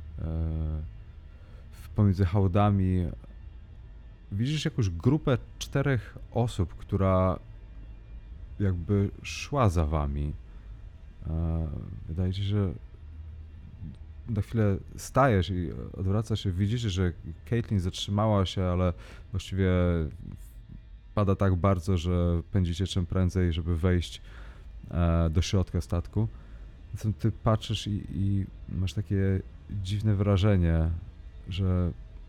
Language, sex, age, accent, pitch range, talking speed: Polish, male, 30-49, native, 85-105 Hz, 95 wpm